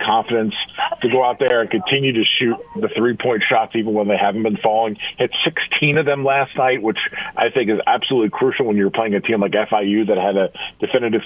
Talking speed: 220 wpm